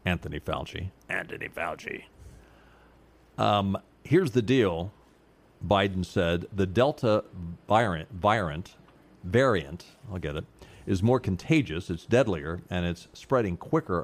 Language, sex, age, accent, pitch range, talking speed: English, male, 50-69, American, 90-115 Hz, 110 wpm